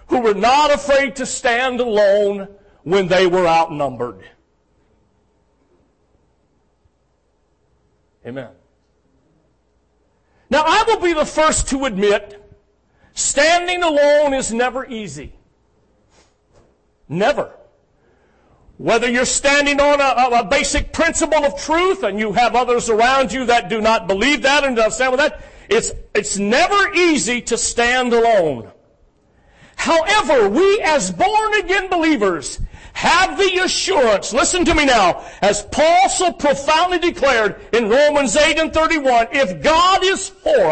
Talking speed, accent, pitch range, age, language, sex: 125 wpm, American, 220-320 Hz, 50-69, English, male